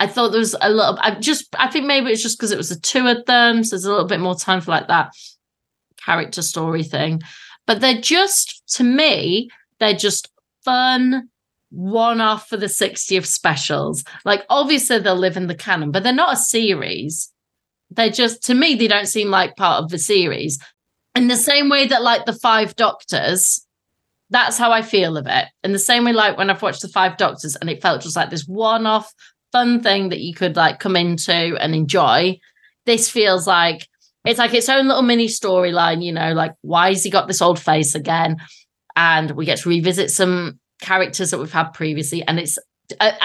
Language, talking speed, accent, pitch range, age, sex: English, 210 wpm, British, 170-230 Hz, 30-49, female